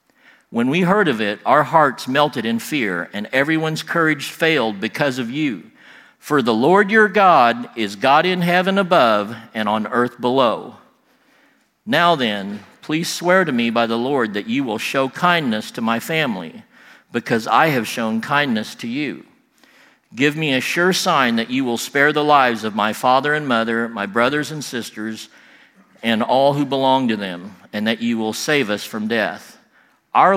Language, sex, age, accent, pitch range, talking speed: English, male, 50-69, American, 115-160 Hz, 180 wpm